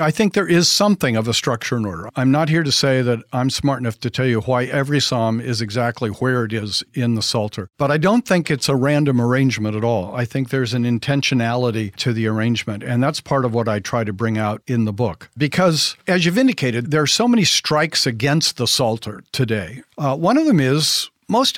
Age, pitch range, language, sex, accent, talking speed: 50-69, 115-155 Hz, English, male, American, 230 wpm